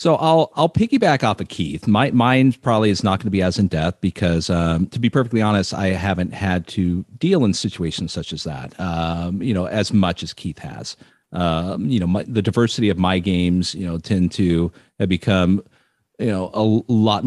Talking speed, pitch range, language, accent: 215 wpm, 90-110 Hz, English, American